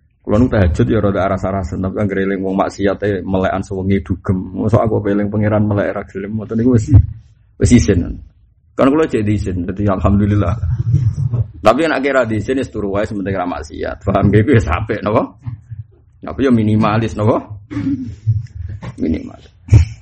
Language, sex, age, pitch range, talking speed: Indonesian, male, 20-39, 90-110 Hz, 160 wpm